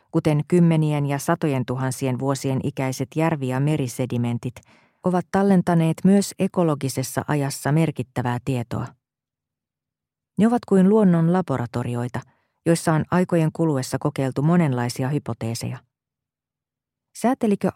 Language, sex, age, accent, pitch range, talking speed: Finnish, female, 40-59, native, 130-170 Hz, 100 wpm